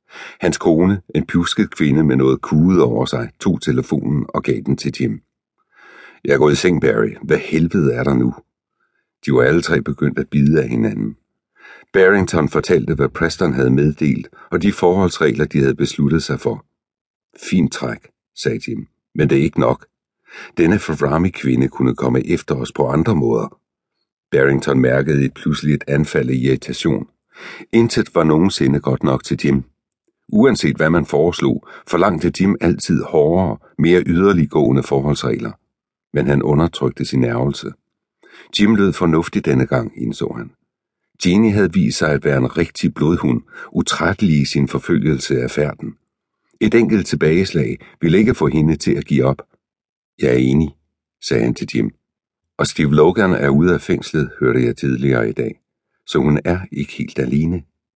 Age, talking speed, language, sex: 60-79, 160 wpm, English, male